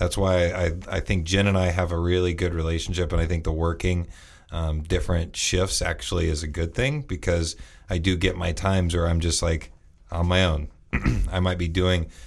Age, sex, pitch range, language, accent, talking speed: 30-49, male, 80-95 Hz, English, American, 210 wpm